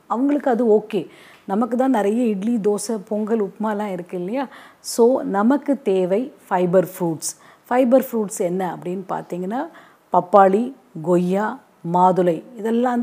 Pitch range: 190-245 Hz